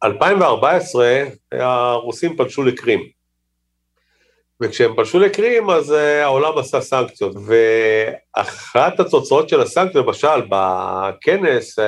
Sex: male